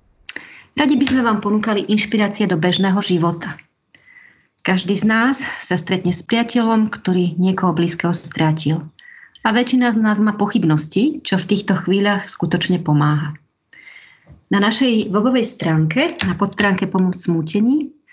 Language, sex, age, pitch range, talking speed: Slovak, female, 30-49, 175-230 Hz, 130 wpm